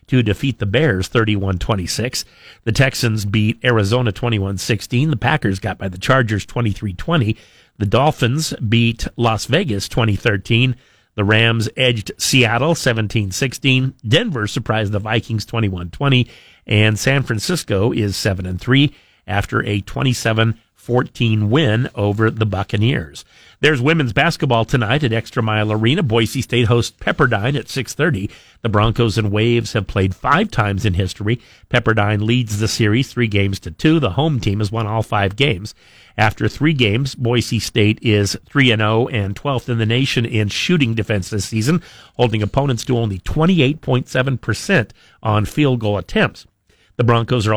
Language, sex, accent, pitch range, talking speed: English, male, American, 105-130 Hz, 150 wpm